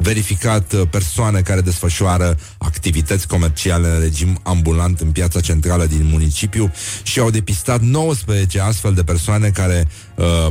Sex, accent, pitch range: male, native, 95-115 Hz